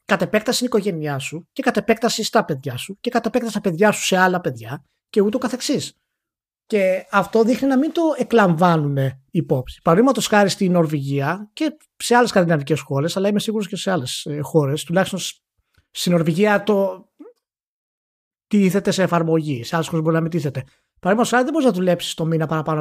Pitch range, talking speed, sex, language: 155-230 Hz, 180 wpm, male, Greek